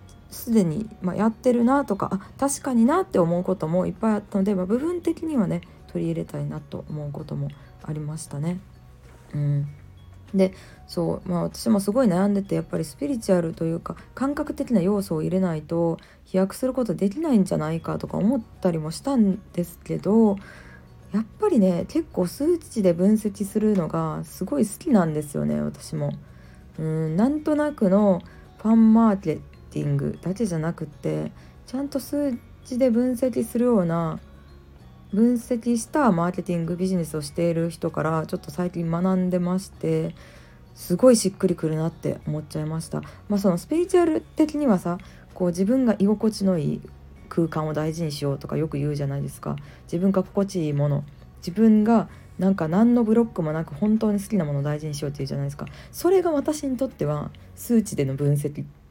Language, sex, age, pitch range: Japanese, female, 40-59, 150-220 Hz